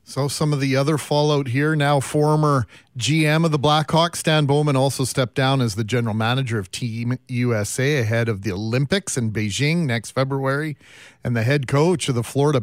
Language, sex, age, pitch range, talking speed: English, male, 40-59, 125-155 Hz, 190 wpm